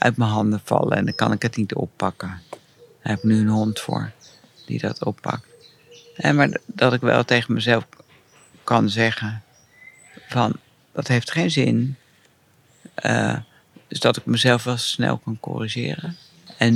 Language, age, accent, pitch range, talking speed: Dutch, 60-79, Dutch, 110-135 Hz, 160 wpm